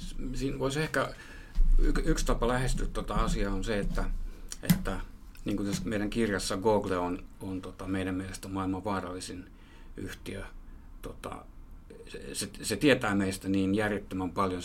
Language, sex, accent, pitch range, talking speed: Finnish, male, native, 90-105 Hz, 135 wpm